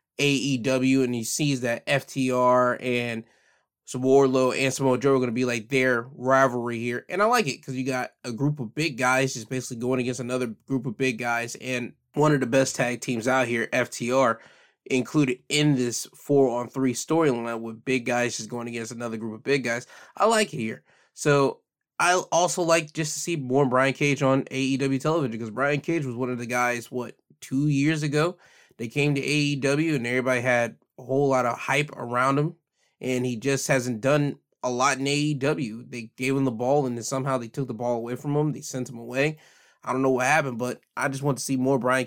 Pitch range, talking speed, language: 125-140 Hz, 220 wpm, English